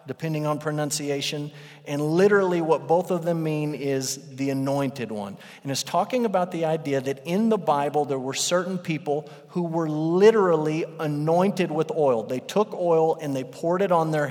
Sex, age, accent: male, 40-59, American